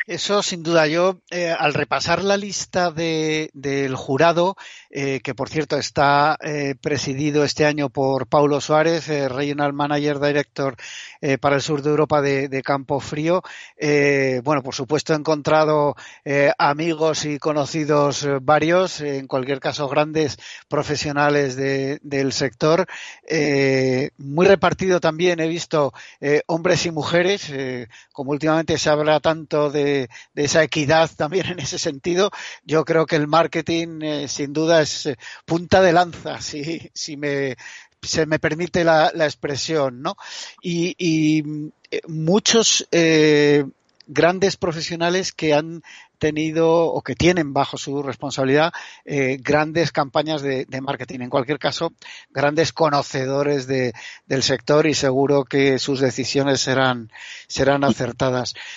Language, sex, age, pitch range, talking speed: Spanish, male, 50-69, 140-165 Hz, 140 wpm